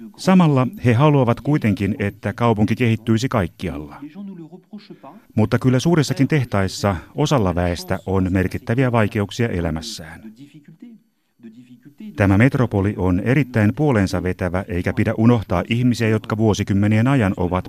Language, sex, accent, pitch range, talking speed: Finnish, male, native, 95-125 Hz, 110 wpm